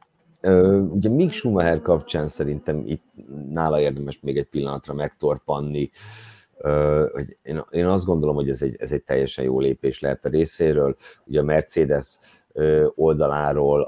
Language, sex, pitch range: Hungarian, male, 70-80 Hz